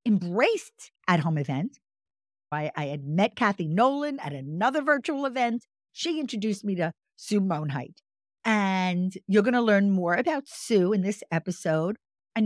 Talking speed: 155 wpm